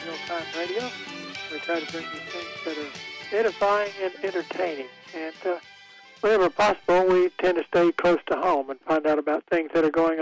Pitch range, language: 155-180 Hz, English